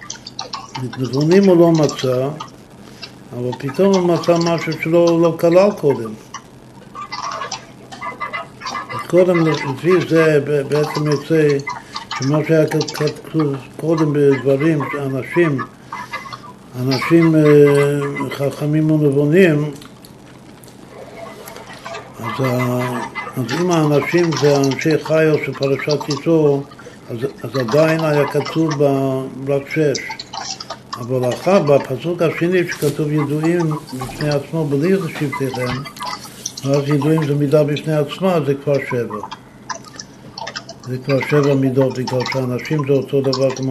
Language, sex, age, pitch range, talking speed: Hebrew, male, 60-79, 130-155 Hz, 100 wpm